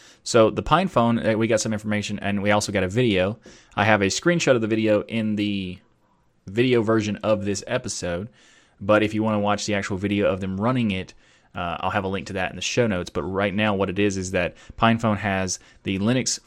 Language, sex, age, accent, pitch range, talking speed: English, male, 20-39, American, 95-110 Hz, 230 wpm